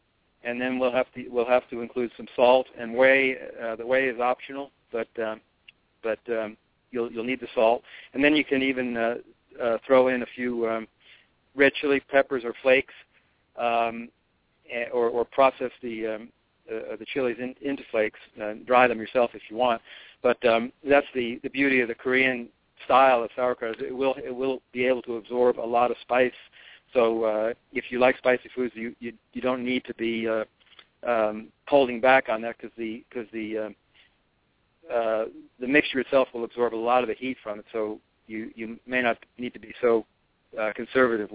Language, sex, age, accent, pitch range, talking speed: English, male, 50-69, American, 115-130 Hz, 195 wpm